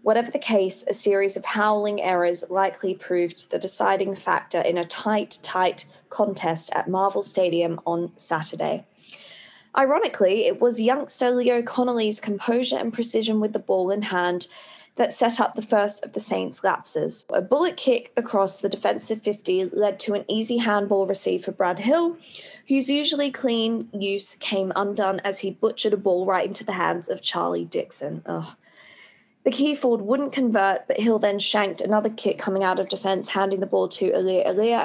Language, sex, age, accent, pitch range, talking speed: English, female, 20-39, Australian, 190-230 Hz, 175 wpm